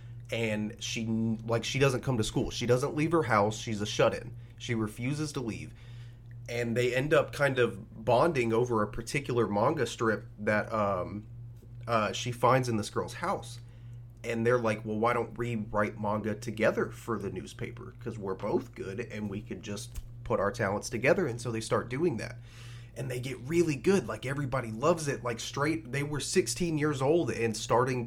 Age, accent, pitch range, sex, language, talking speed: 30-49, American, 110-125 Hz, male, English, 190 wpm